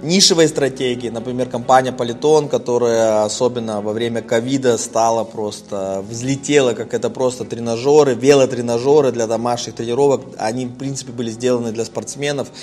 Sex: male